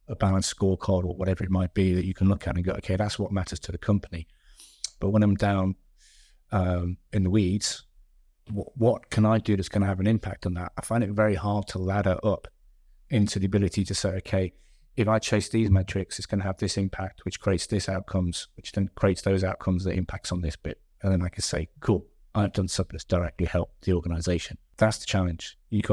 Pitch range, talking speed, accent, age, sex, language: 90-105 Hz, 230 wpm, British, 30-49, male, English